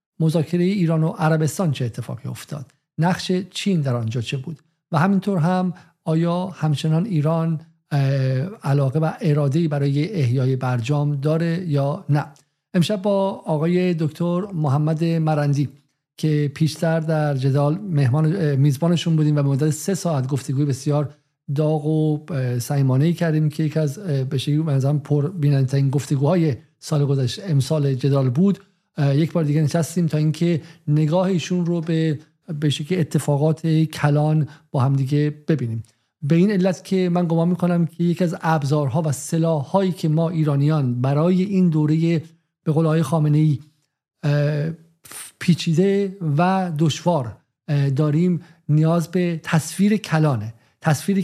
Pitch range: 145-170 Hz